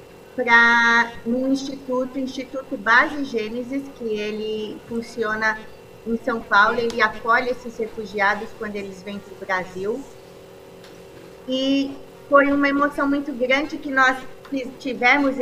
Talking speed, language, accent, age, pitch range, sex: 120 wpm, Portuguese, Brazilian, 30-49, 225-260 Hz, female